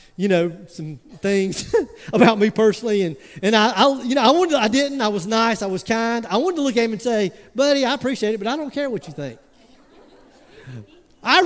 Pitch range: 215-315 Hz